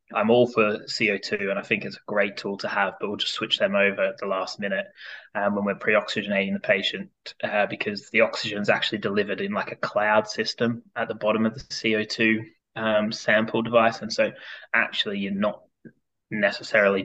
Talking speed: 195 wpm